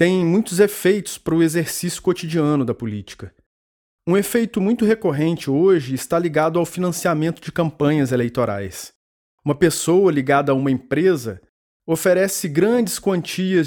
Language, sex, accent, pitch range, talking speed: Portuguese, male, Brazilian, 140-185 Hz, 130 wpm